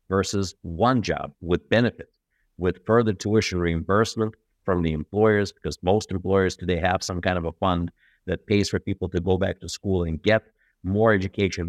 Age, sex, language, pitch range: 50-69, male, English, 90-110 Hz